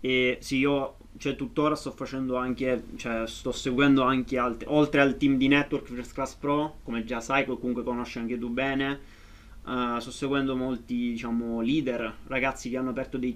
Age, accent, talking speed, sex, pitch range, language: 20-39, native, 180 wpm, male, 125-150 Hz, Italian